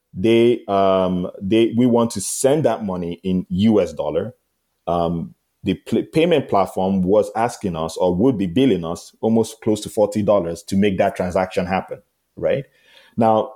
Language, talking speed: English, 160 wpm